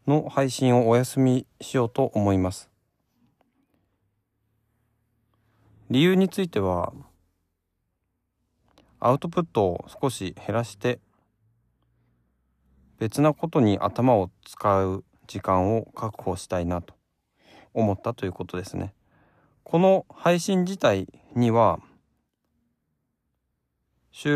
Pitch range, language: 90-130 Hz, Japanese